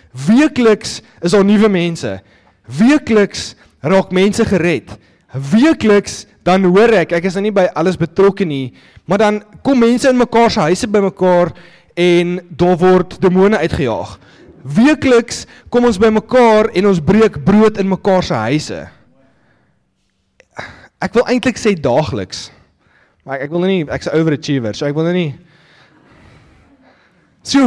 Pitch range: 155-220 Hz